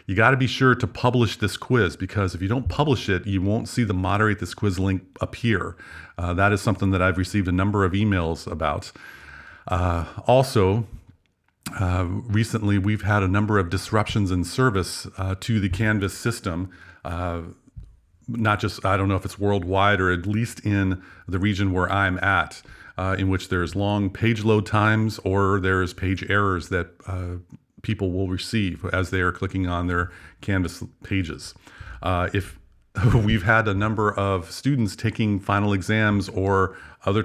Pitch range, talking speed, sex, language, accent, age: 90-105 Hz, 175 wpm, male, English, American, 50-69